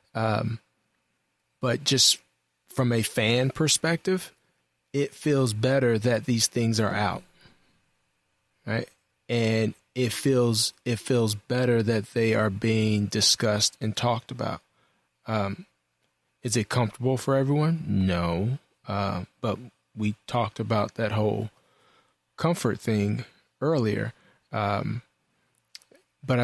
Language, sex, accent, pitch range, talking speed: English, male, American, 105-120 Hz, 110 wpm